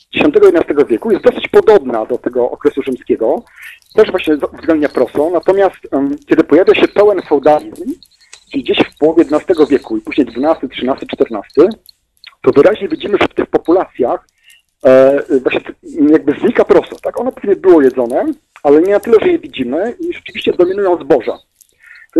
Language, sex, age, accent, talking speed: Polish, male, 40-59, native, 165 wpm